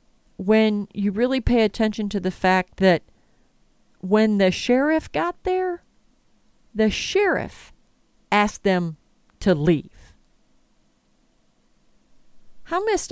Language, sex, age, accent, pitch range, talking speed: English, female, 40-59, American, 185-250 Hz, 100 wpm